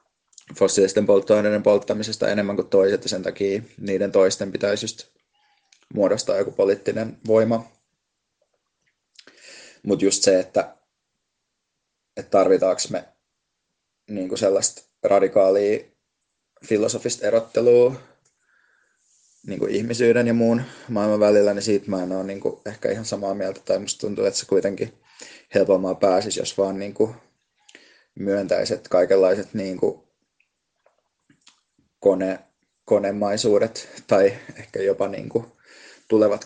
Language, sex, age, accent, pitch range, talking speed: Finnish, male, 20-39, native, 100-115 Hz, 110 wpm